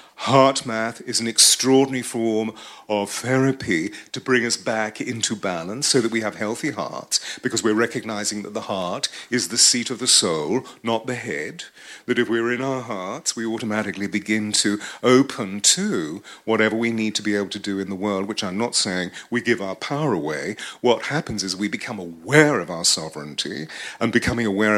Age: 40-59